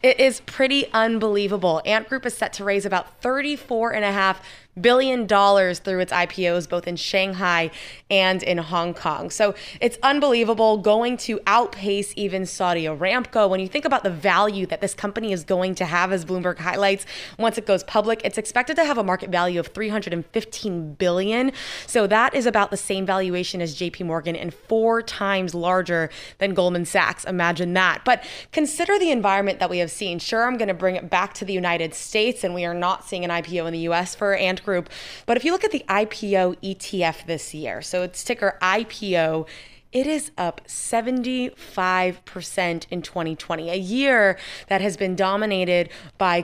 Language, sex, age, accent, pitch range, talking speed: English, female, 20-39, American, 180-220 Hz, 180 wpm